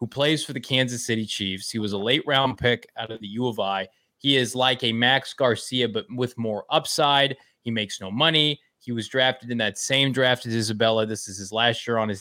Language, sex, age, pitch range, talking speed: English, male, 20-39, 110-140 Hz, 240 wpm